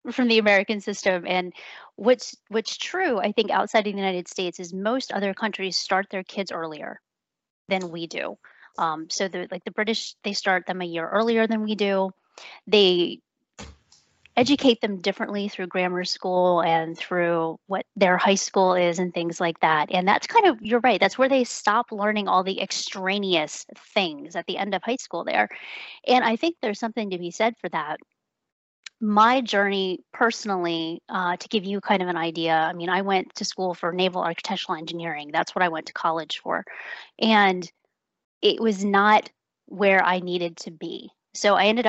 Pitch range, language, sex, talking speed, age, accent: 180-215 Hz, English, female, 185 wpm, 30-49, American